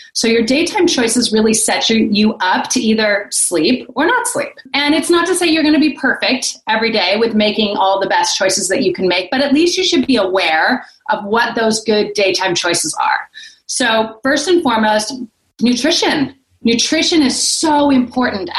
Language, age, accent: English, 30-49, American